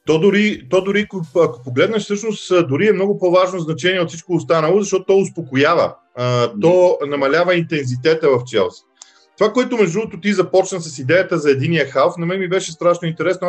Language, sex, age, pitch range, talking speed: Bulgarian, male, 40-59, 140-185 Hz, 180 wpm